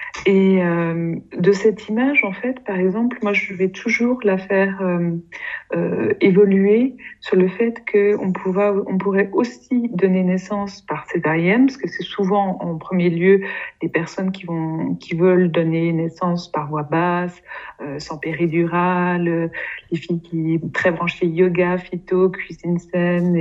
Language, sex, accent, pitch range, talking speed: French, female, French, 180-215 Hz, 160 wpm